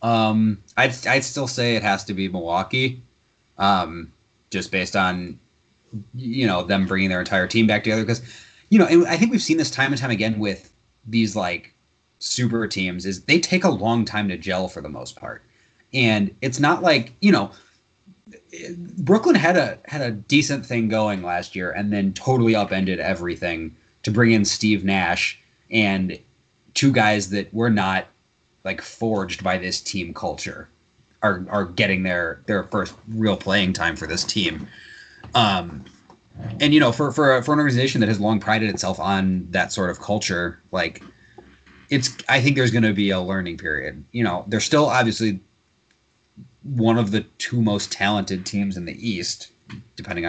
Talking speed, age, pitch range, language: 180 wpm, 30-49, 95-125 Hz, English